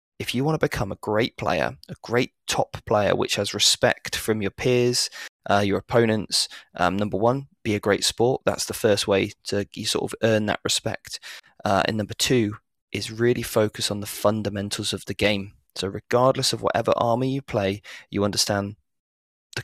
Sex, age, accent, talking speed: male, 20-39, British, 185 wpm